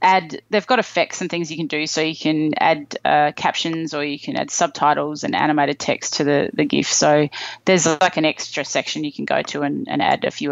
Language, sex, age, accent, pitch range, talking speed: English, female, 30-49, Australian, 155-185 Hz, 240 wpm